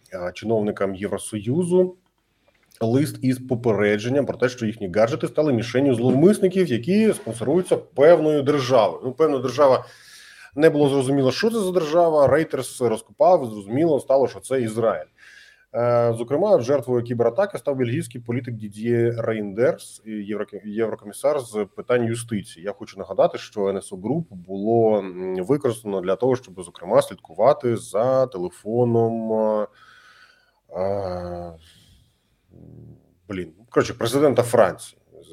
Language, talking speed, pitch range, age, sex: Ukrainian, 110 wpm, 100-130 Hz, 20-39, male